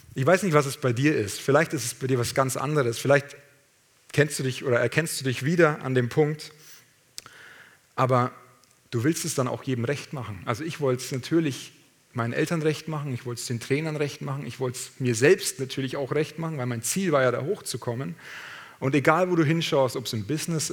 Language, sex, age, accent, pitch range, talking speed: German, male, 40-59, German, 125-150 Hz, 225 wpm